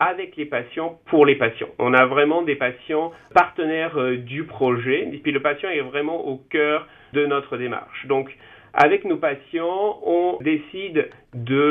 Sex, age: male, 40-59